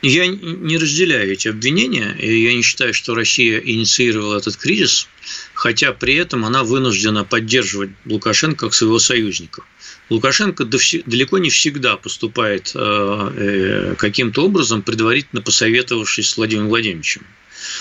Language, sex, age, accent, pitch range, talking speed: Russian, male, 50-69, native, 110-130 Hz, 120 wpm